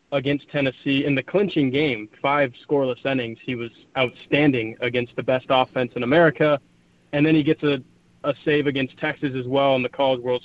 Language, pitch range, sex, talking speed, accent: English, 130-155 Hz, male, 190 wpm, American